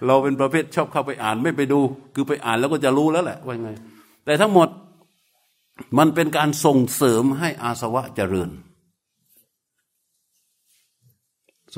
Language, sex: Thai, male